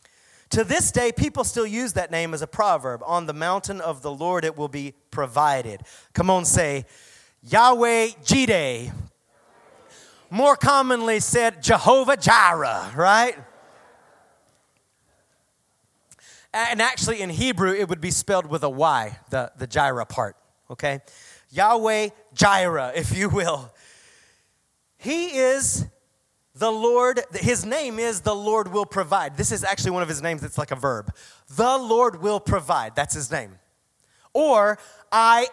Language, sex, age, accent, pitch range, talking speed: English, male, 30-49, American, 165-245 Hz, 140 wpm